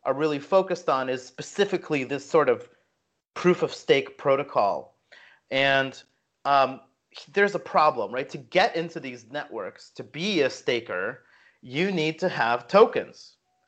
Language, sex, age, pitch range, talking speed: English, male, 30-49, 125-165 Hz, 140 wpm